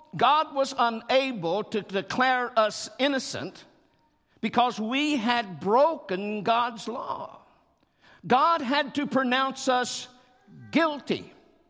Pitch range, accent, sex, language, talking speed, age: 200-295 Hz, American, male, English, 95 wpm, 60-79